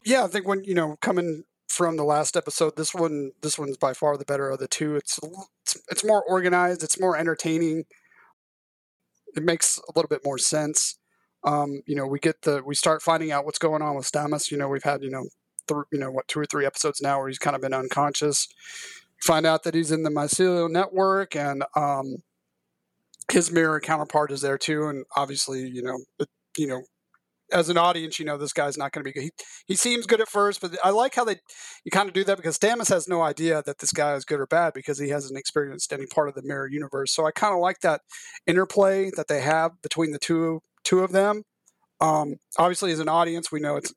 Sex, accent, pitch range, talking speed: male, American, 140-180 Hz, 230 wpm